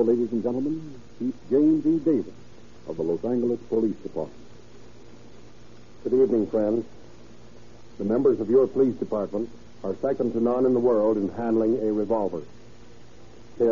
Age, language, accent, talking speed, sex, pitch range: 60-79, English, American, 145 wpm, male, 115-135 Hz